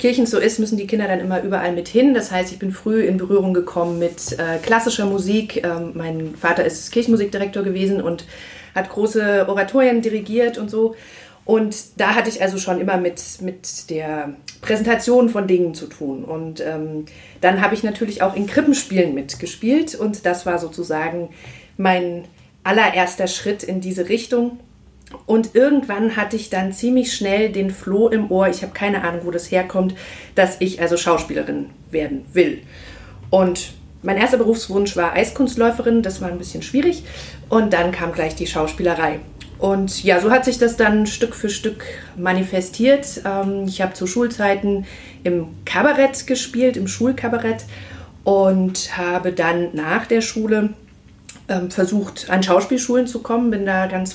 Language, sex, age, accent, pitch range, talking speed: German, female, 40-59, German, 175-225 Hz, 160 wpm